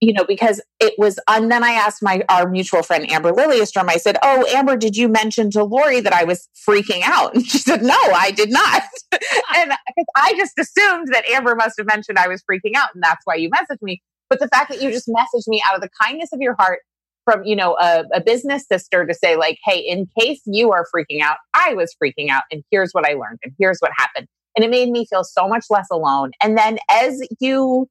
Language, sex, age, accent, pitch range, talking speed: English, female, 30-49, American, 185-280 Hz, 245 wpm